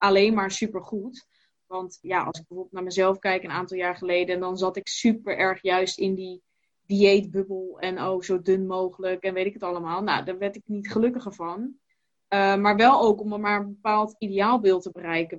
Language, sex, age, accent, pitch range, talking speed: Dutch, female, 20-39, Dutch, 180-205 Hz, 205 wpm